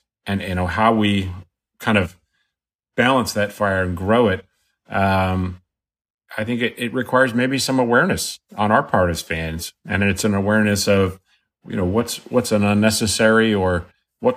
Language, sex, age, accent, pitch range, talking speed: Greek, male, 30-49, American, 95-110 Hz, 165 wpm